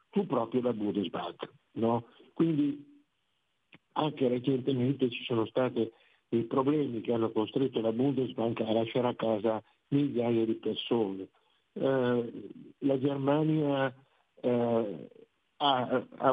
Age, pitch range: 60-79, 115-140 Hz